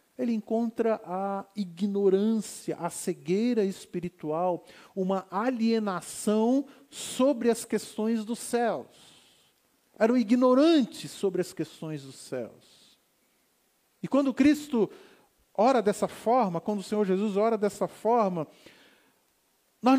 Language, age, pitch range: Portuguese, 50-69, 180-240 Hz